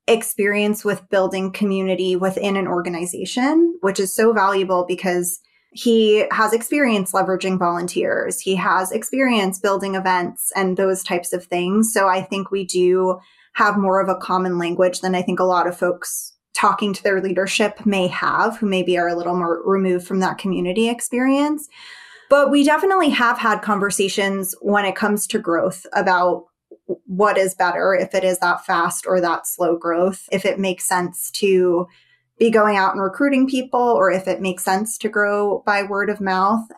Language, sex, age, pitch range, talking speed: English, female, 20-39, 185-215 Hz, 175 wpm